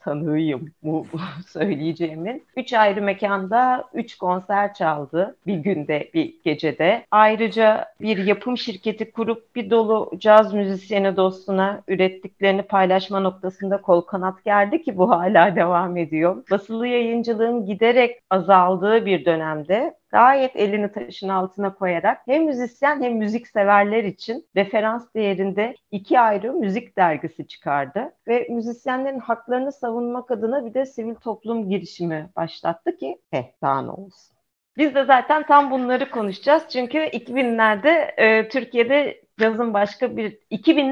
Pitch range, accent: 185-240 Hz, native